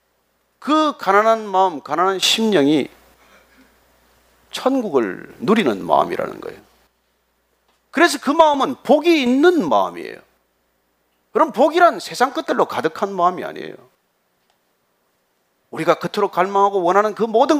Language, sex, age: Korean, male, 40-59